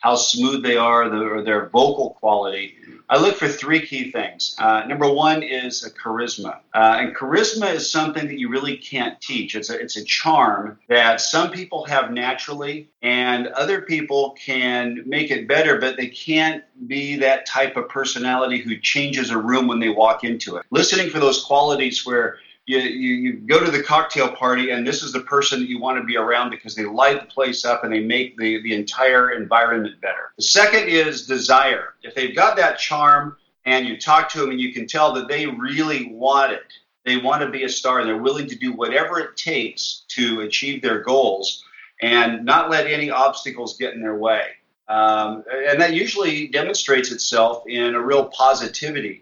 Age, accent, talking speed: 40-59, American, 195 wpm